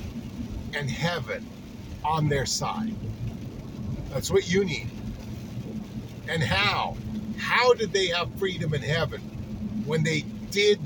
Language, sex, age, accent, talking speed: English, male, 50-69, American, 115 wpm